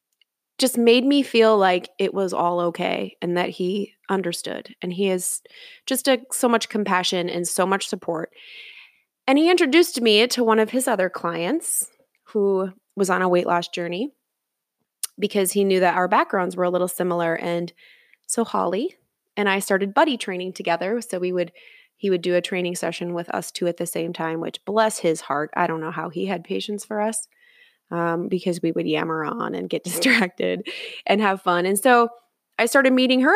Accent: American